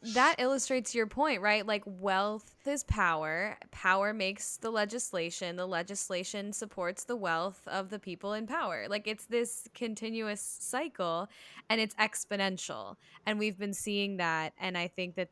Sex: female